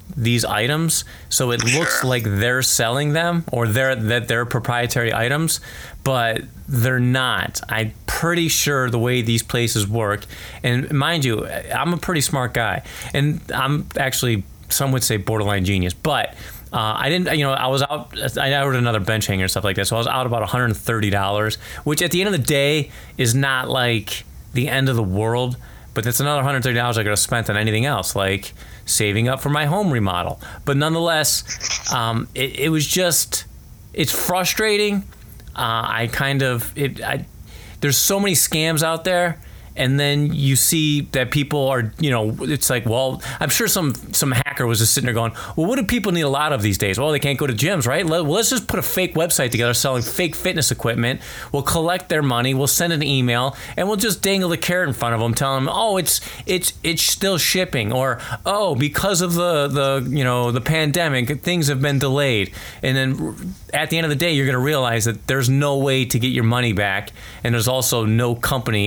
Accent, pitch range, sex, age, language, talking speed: American, 115-150 Hz, male, 30-49, English, 205 wpm